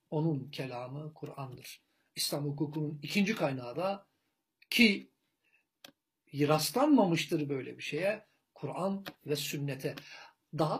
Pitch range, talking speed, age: 145-205 Hz, 95 wpm, 60-79